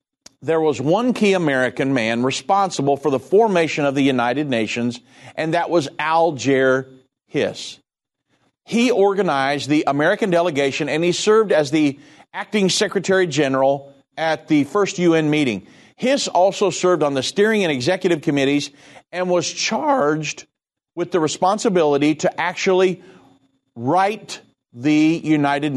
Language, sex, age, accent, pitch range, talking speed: English, male, 50-69, American, 140-195 Hz, 135 wpm